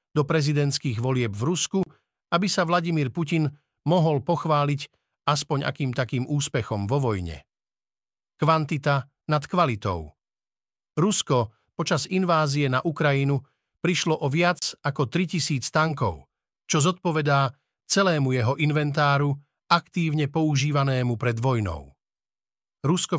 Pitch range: 140-170 Hz